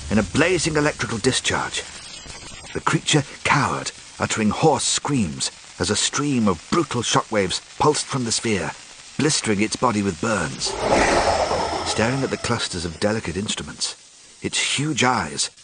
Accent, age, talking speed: British, 50-69, 140 wpm